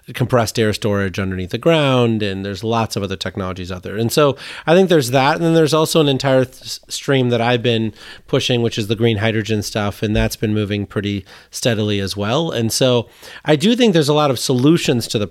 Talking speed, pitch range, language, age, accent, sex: 225 wpm, 110-140 Hz, English, 30-49, American, male